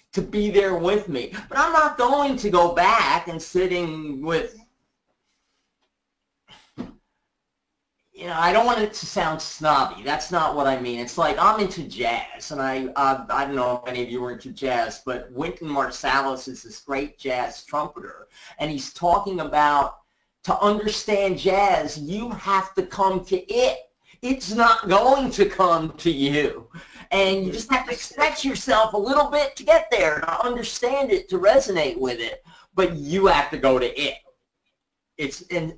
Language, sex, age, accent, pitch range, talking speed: English, male, 40-59, American, 145-205 Hz, 175 wpm